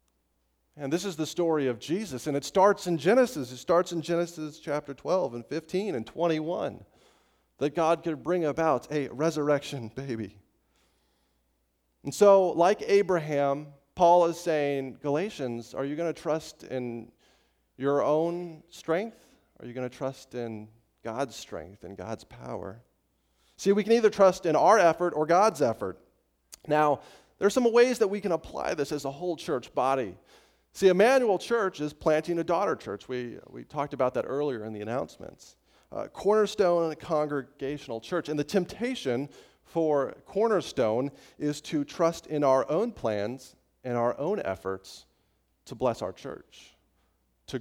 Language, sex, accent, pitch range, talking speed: English, male, American, 120-170 Hz, 160 wpm